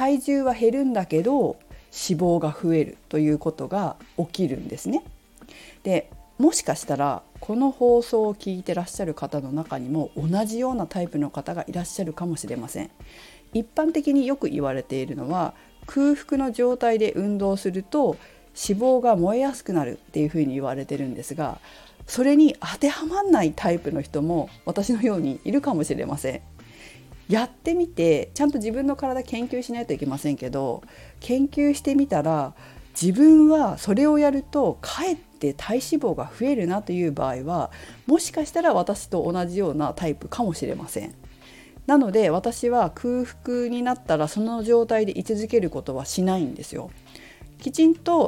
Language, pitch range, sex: Japanese, 155-255 Hz, female